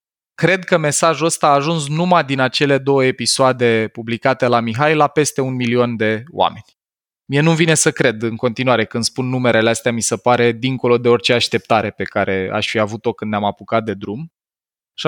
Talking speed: 195 wpm